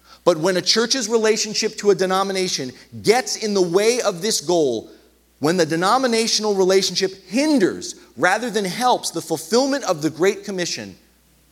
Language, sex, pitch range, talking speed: English, male, 125-190 Hz, 150 wpm